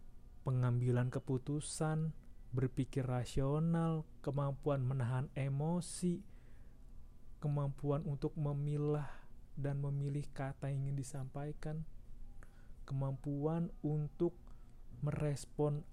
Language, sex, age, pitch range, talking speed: Indonesian, male, 30-49, 125-145 Hz, 70 wpm